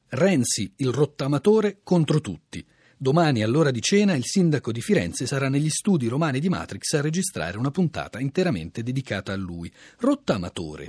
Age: 40-59